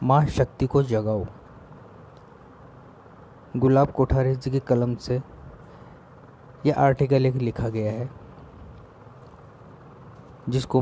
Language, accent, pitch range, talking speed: Hindi, native, 115-135 Hz, 95 wpm